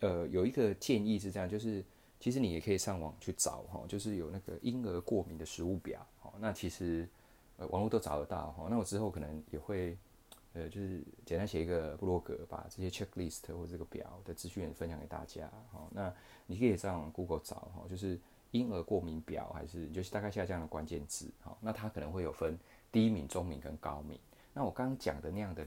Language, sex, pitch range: Chinese, male, 80-105 Hz